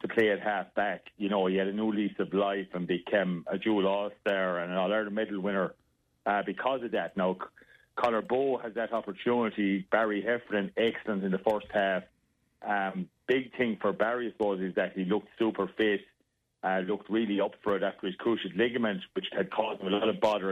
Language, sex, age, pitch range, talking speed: English, male, 40-59, 100-115 Hz, 215 wpm